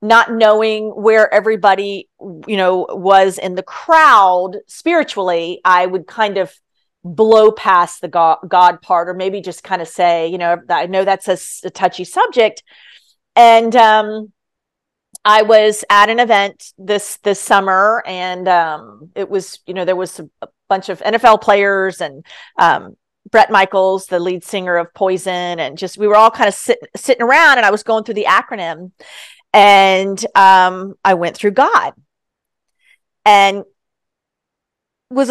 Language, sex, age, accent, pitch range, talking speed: English, female, 40-59, American, 185-225 Hz, 160 wpm